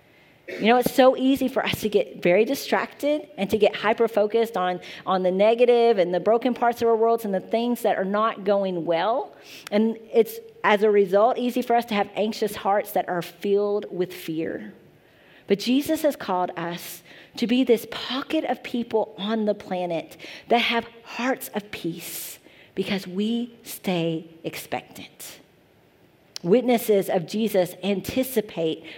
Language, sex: English, female